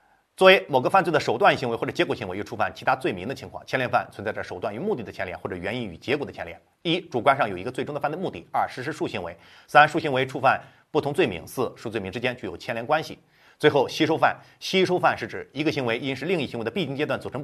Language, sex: Chinese, male